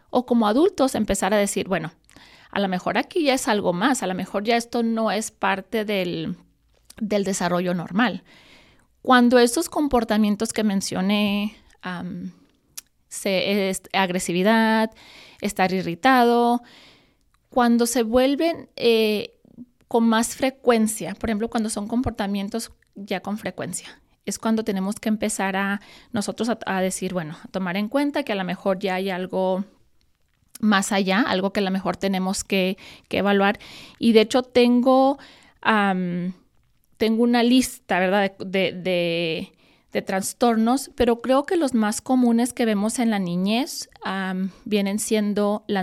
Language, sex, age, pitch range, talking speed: Spanish, female, 30-49, 190-240 Hz, 150 wpm